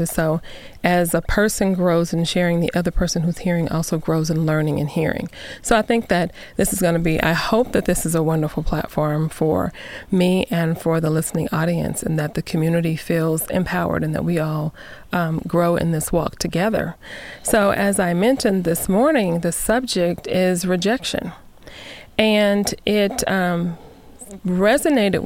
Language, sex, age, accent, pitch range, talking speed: English, female, 30-49, American, 165-195 Hz, 170 wpm